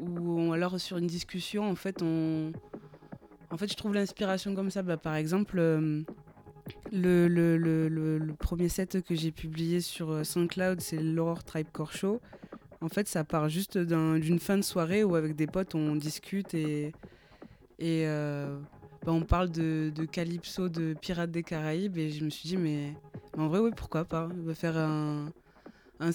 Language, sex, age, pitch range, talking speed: French, female, 20-39, 155-185 Hz, 185 wpm